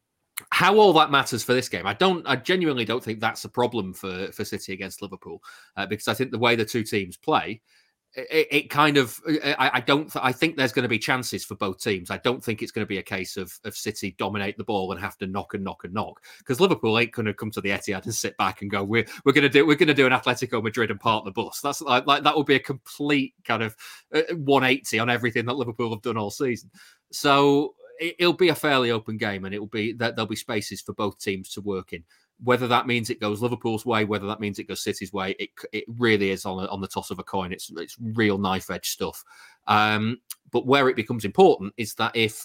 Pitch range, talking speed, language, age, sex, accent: 105-130 Hz, 260 wpm, English, 30-49, male, British